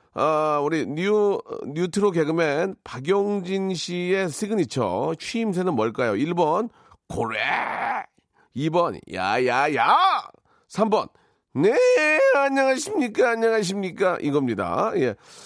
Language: Korean